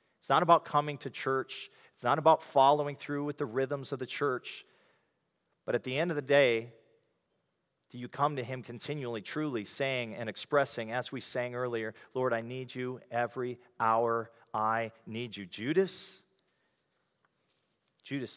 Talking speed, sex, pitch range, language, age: 160 wpm, male, 115-145 Hz, English, 40-59